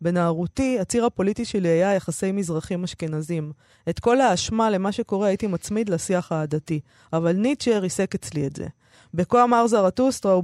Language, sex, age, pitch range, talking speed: Hebrew, female, 20-39, 170-220 Hz, 155 wpm